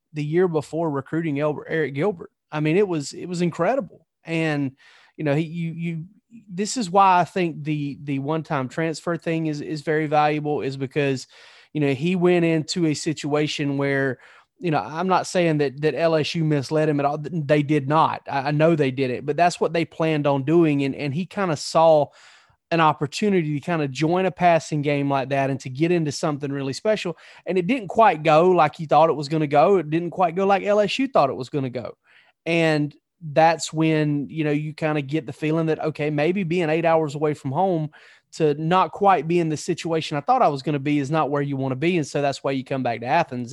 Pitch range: 145-170 Hz